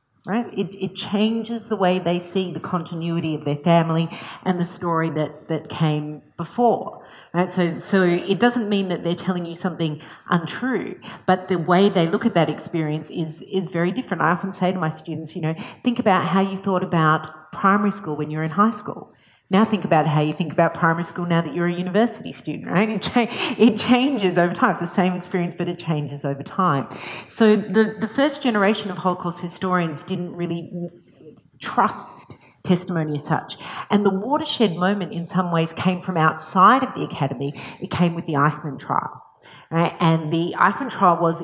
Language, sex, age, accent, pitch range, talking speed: English, female, 40-59, Australian, 160-195 Hz, 195 wpm